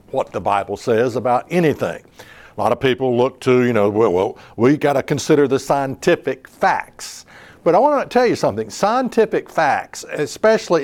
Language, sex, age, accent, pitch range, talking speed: English, male, 60-79, American, 120-160 Hz, 185 wpm